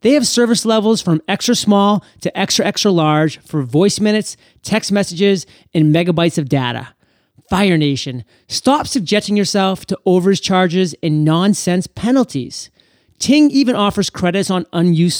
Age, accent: 30-49, American